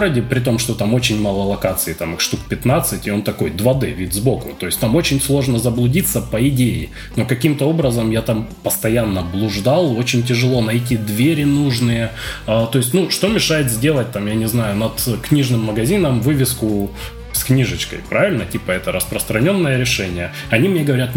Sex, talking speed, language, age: male, 175 wpm, Russian, 20-39